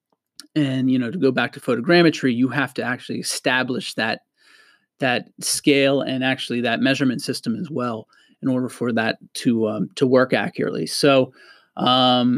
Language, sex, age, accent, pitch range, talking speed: English, male, 30-49, American, 130-160 Hz, 165 wpm